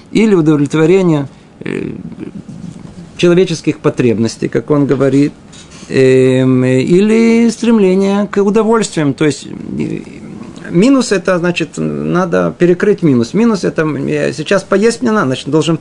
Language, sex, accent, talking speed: Russian, male, native, 105 wpm